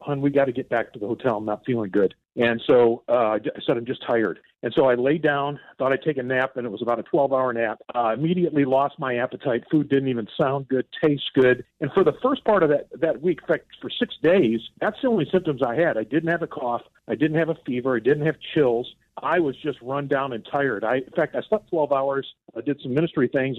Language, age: English, 50-69